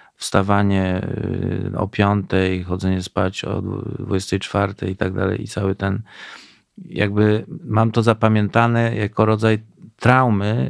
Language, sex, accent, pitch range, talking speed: Polish, male, native, 95-120 Hz, 110 wpm